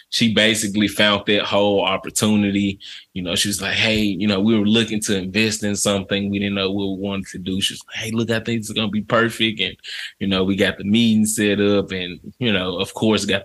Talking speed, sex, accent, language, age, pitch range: 240 wpm, male, American, English, 20-39, 100-115 Hz